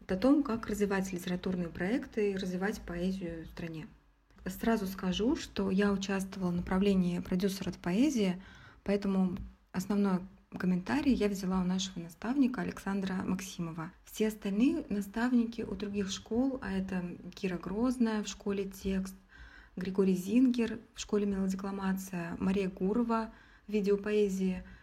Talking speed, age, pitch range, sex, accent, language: 130 wpm, 20-39, 185-215 Hz, female, native, Russian